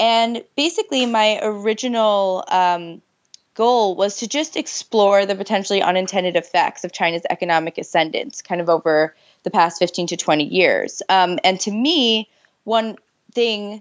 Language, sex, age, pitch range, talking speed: English, female, 20-39, 175-215 Hz, 145 wpm